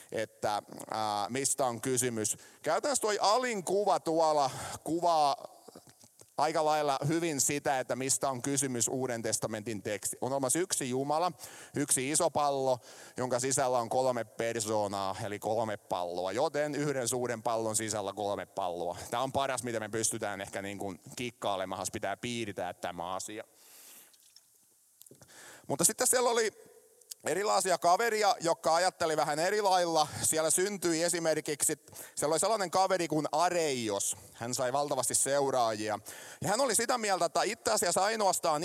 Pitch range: 115-165 Hz